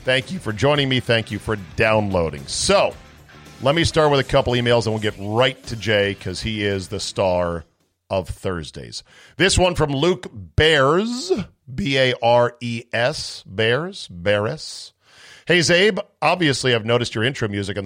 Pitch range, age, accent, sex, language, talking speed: 100-130 Hz, 40-59, American, male, English, 160 wpm